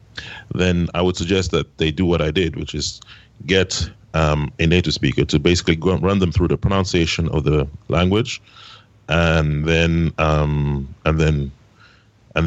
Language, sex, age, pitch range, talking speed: English, male, 30-49, 80-100 Hz, 165 wpm